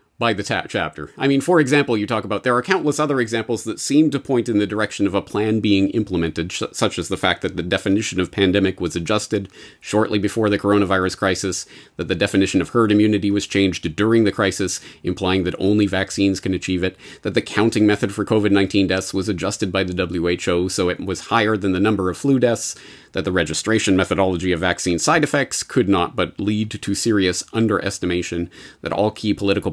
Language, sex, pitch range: English, male, 95-120 Hz